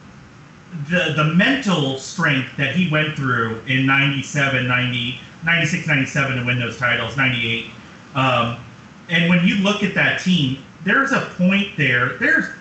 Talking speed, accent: 150 wpm, American